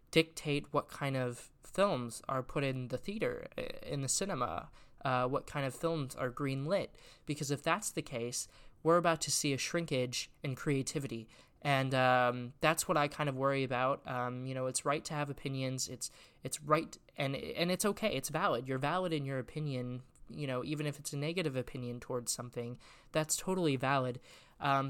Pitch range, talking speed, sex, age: 125-150 Hz, 190 wpm, male, 20-39